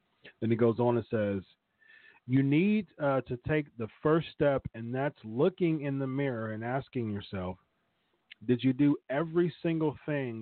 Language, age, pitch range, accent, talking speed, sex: English, 40-59, 115-150 Hz, American, 165 wpm, male